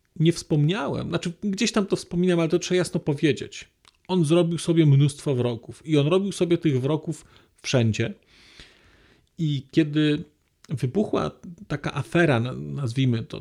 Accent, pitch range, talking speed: native, 120-170 Hz, 140 wpm